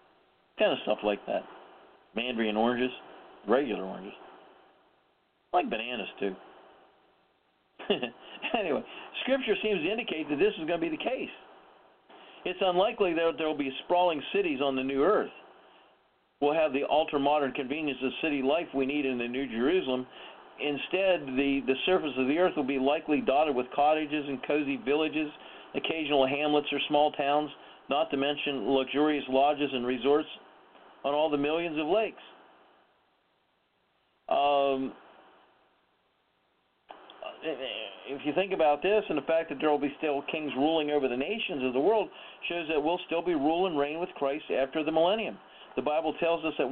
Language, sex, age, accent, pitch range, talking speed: English, male, 50-69, American, 135-170 Hz, 160 wpm